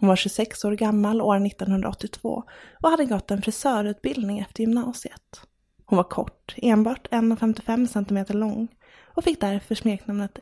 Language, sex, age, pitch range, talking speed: English, female, 20-39, 210-240 Hz, 145 wpm